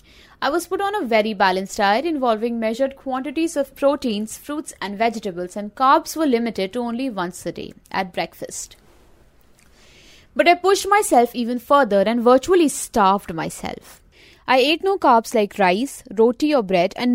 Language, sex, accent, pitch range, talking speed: English, female, Indian, 205-295 Hz, 165 wpm